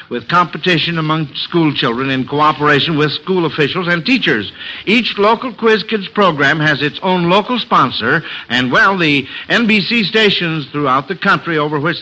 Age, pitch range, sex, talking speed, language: 60-79, 145-200 Hz, male, 155 wpm, English